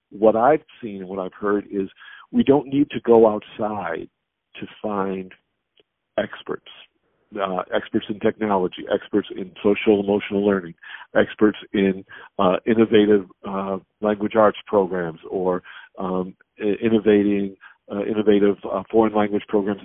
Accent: American